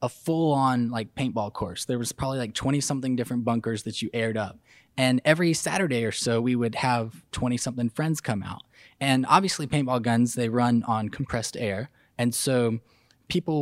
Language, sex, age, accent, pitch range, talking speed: English, male, 20-39, American, 115-140 Hz, 190 wpm